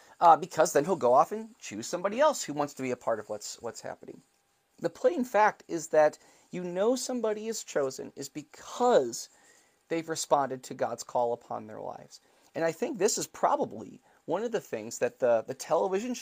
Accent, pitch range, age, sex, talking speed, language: American, 125-200 Hz, 30-49, male, 200 wpm, English